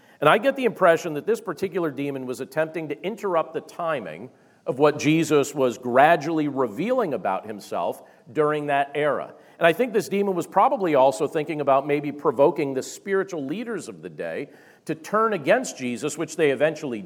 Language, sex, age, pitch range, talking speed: English, male, 50-69, 145-195 Hz, 180 wpm